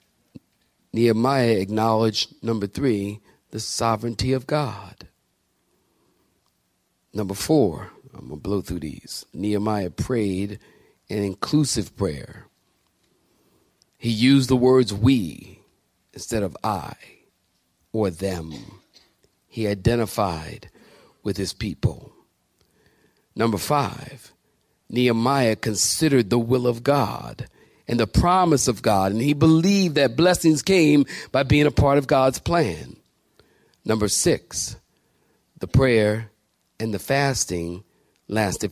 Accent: American